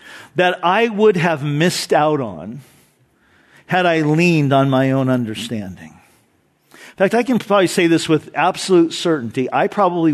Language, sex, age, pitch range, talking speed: English, male, 50-69, 145-185 Hz, 155 wpm